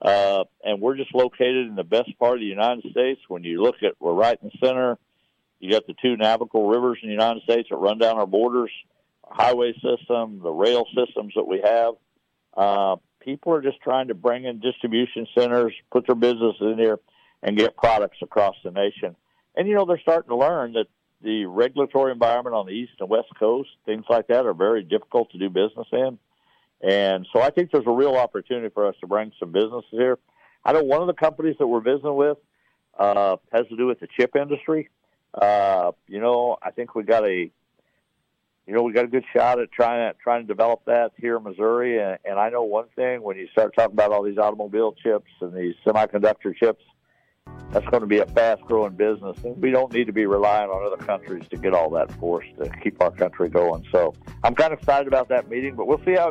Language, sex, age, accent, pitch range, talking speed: English, male, 60-79, American, 105-125 Hz, 220 wpm